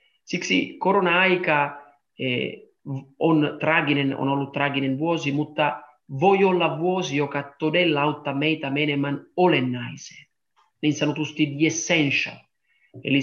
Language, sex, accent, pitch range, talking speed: Finnish, male, Italian, 145-180 Hz, 100 wpm